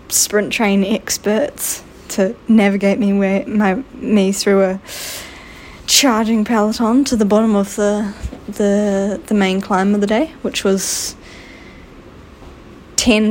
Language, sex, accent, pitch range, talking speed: English, female, Australian, 195-225 Hz, 125 wpm